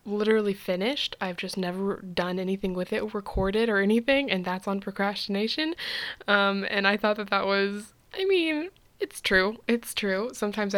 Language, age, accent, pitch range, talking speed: English, 10-29, American, 190-230 Hz, 165 wpm